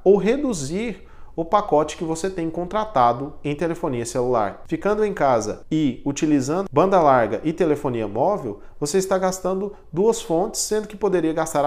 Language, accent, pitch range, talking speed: Portuguese, Brazilian, 140-195 Hz, 155 wpm